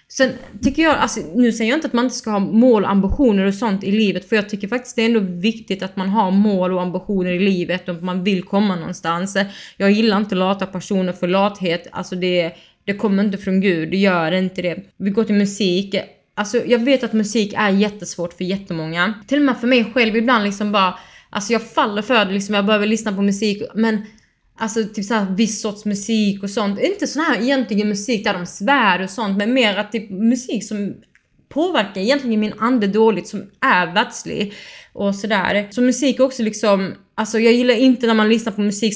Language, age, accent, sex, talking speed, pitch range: Swedish, 20-39, native, female, 220 wpm, 190-225 Hz